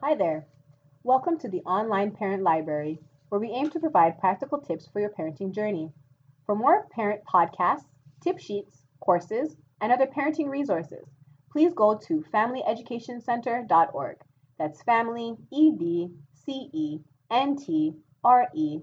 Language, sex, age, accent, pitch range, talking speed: English, female, 30-49, American, 145-235 Hz, 120 wpm